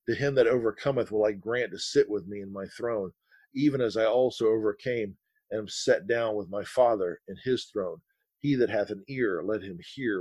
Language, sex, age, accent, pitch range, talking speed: English, male, 40-59, American, 115-145 Hz, 215 wpm